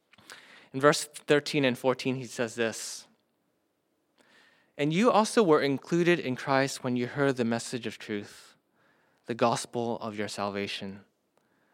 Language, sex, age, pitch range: English, male, 20-39, 120-160 Hz